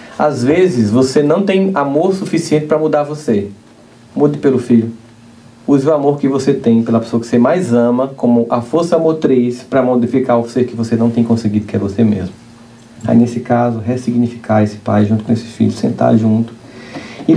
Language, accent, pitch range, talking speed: Portuguese, Brazilian, 115-135 Hz, 190 wpm